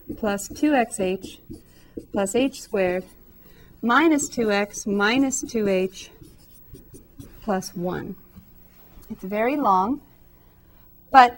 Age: 40-59